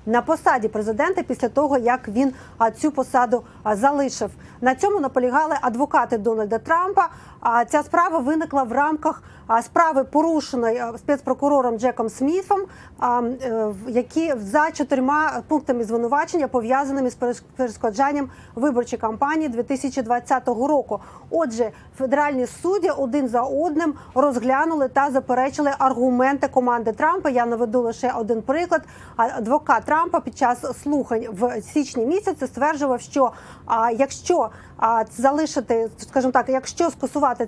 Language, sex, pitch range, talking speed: Ukrainian, female, 240-295 Hz, 115 wpm